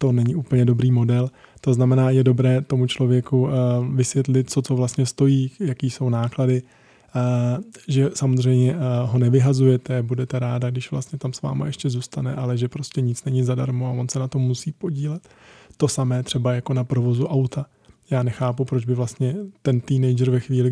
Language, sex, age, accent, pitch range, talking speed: Czech, male, 20-39, native, 125-135 Hz, 175 wpm